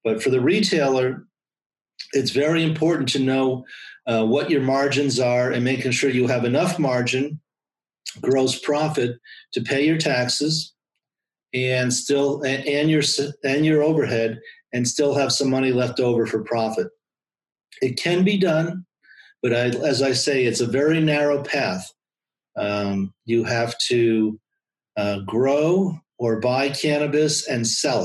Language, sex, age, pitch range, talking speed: English, male, 40-59, 120-140 Hz, 145 wpm